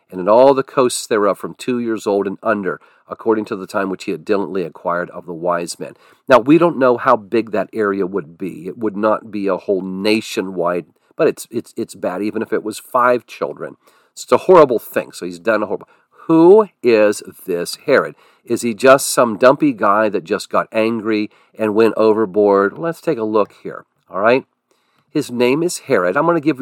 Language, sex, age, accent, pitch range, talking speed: English, male, 50-69, American, 105-145 Hz, 210 wpm